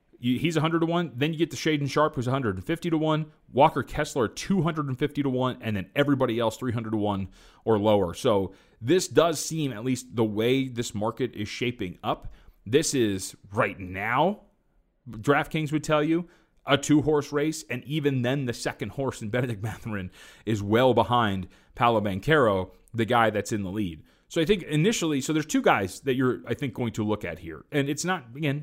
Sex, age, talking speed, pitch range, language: male, 30-49, 195 wpm, 110-150 Hz, English